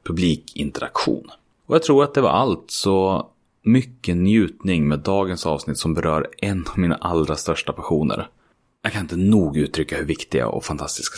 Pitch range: 80-110 Hz